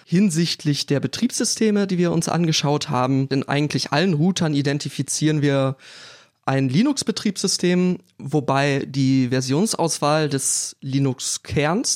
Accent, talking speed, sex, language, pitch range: German, 105 wpm, male, German, 140-190 Hz